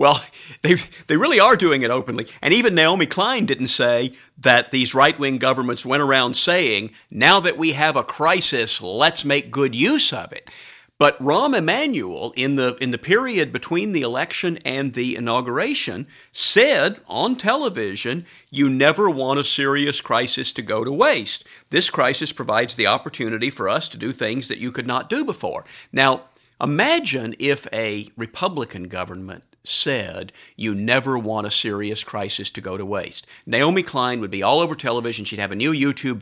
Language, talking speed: English, 175 wpm